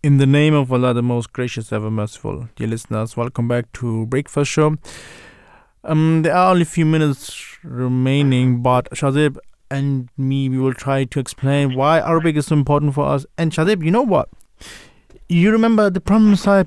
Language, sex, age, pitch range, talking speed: English, male, 20-39, 130-160 Hz, 185 wpm